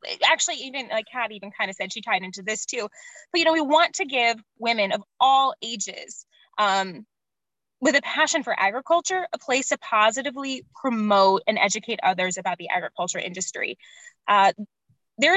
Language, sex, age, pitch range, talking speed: English, female, 10-29, 210-290 Hz, 170 wpm